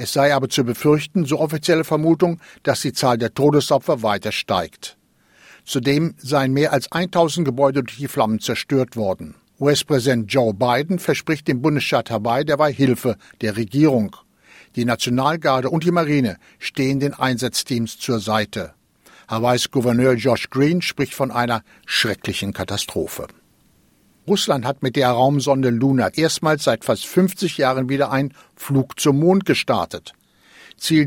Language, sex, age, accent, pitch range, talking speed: German, male, 60-79, German, 125-155 Hz, 145 wpm